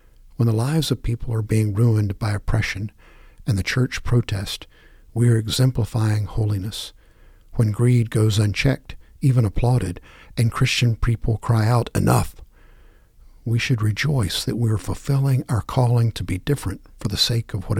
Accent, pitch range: American, 105-125 Hz